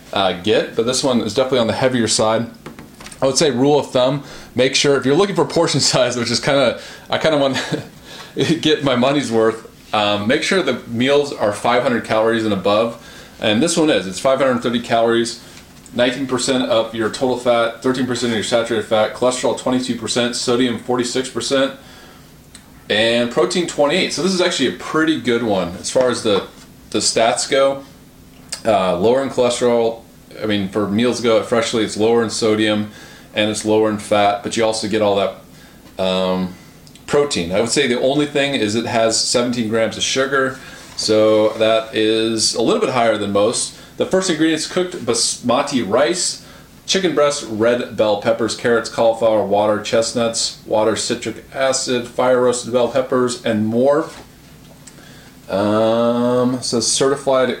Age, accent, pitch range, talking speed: 30-49, American, 110-135 Hz, 170 wpm